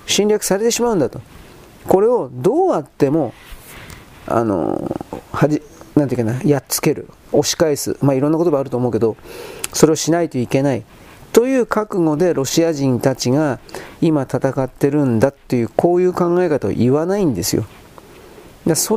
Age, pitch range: 40-59, 125-170 Hz